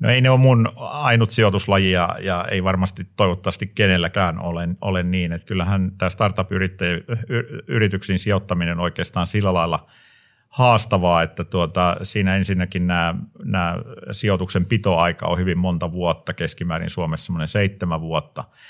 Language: Finnish